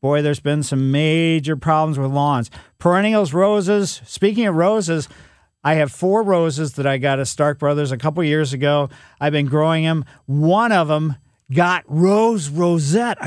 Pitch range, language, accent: 140-180 Hz, English, American